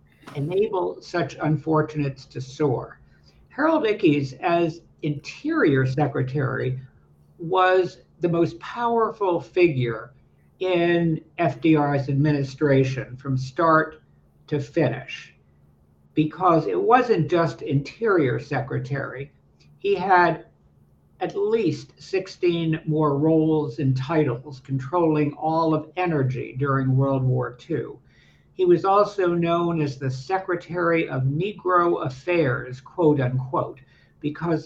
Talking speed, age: 100 wpm, 60-79